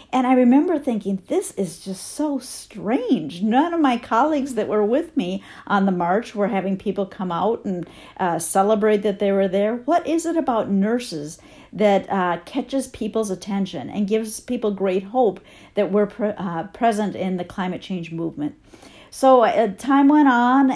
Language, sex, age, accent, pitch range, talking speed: English, female, 50-69, American, 195-255 Hz, 175 wpm